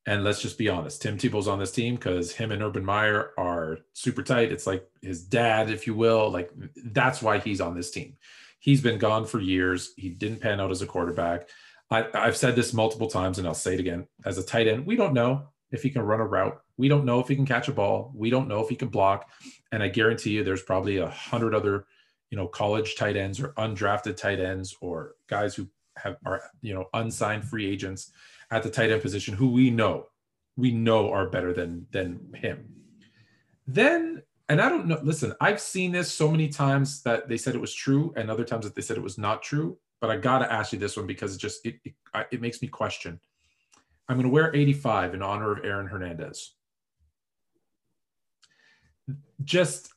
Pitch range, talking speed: 100-135 Hz, 220 wpm